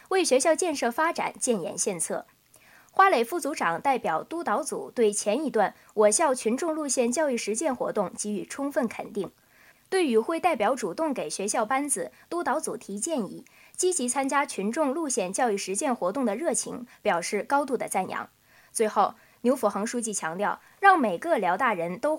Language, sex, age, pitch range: Chinese, female, 20-39, 215-320 Hz